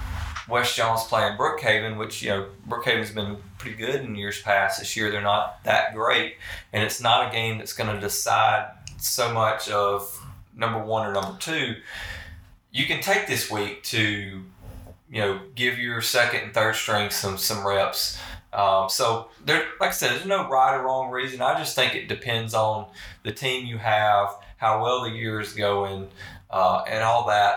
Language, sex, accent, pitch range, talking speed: English, male, American, 100-115 Hz, 185 wpm